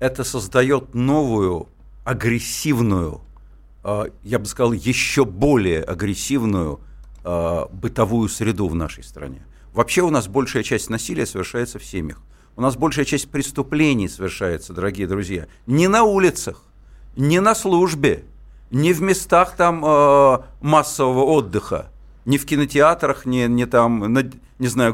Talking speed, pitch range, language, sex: 130 wpm, 105-145 Hz, Russian, male